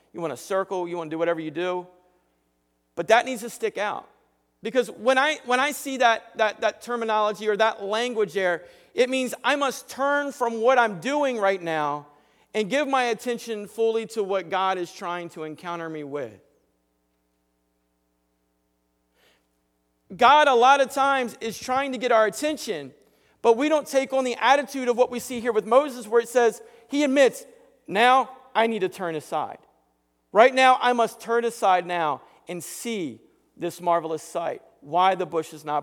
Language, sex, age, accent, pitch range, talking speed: English, male, 40-59, American, 145-235 Hz, 185 wpm